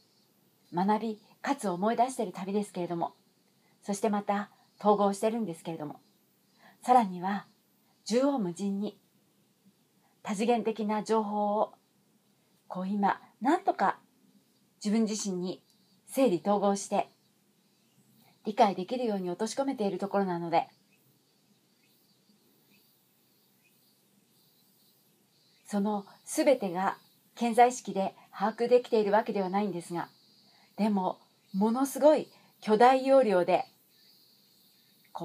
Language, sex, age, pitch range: Japanese, female, 40-59, 190-230 Hz